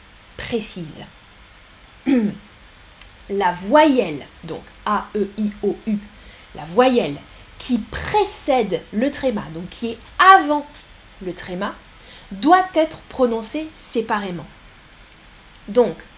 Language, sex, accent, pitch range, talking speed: French, female, French, 215-320 Hz, 95 wpm